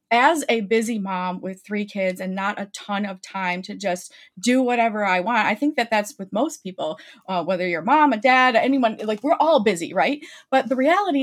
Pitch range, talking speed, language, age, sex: 200-275 Hz, 220 wpm, English, 30-49, female